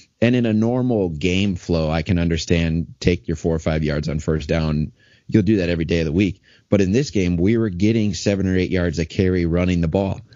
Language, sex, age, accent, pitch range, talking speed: English, male, 30-49, American, 80-100 Hz, 245 wpm